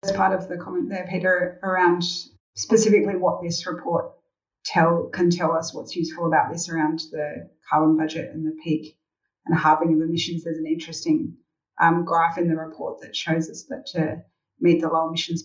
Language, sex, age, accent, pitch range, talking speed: English, female, 30-49, Australian, 160-190 Hz, 185 wpm